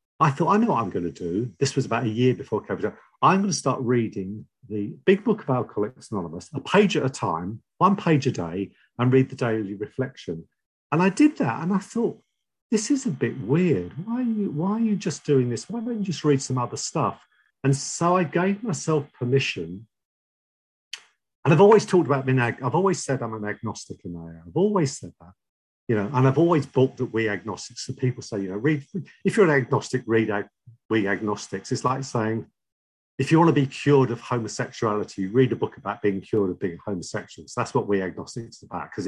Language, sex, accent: English, male, British